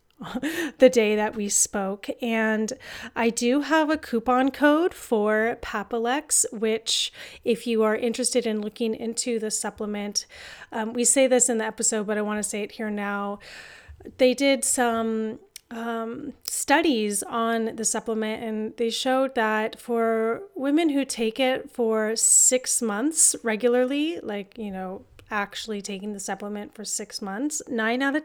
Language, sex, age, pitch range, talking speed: English, female, 30-49, 220-260 Hz, 155 wpm